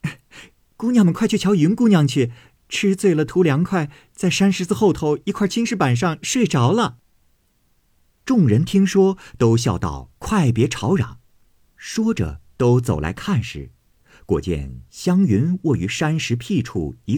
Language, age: Chinese, 50-69